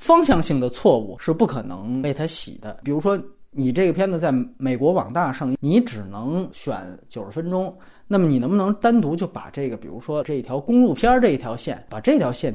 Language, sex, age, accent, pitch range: Chinese, male, 30-49, native, 130-220 Hz